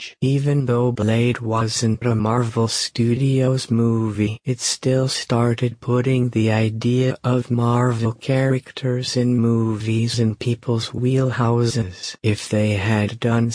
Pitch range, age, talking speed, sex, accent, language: 110-125 Hz, 50-69, 115 wpm, male, American, English